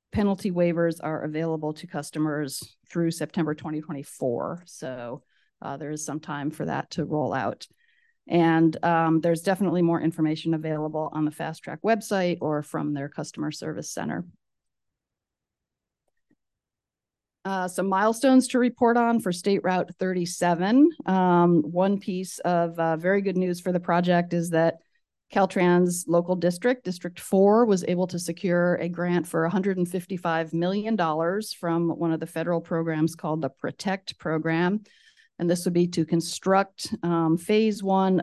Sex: female